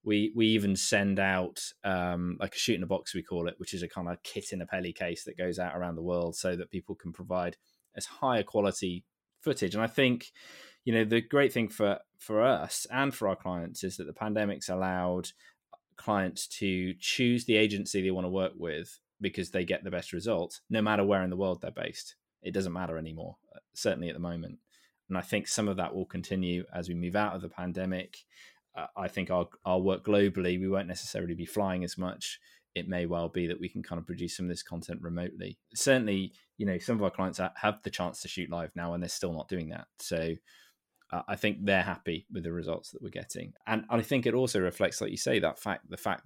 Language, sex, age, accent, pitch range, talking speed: English, male, 20-39, British, 90-100 Hz, 235 wpm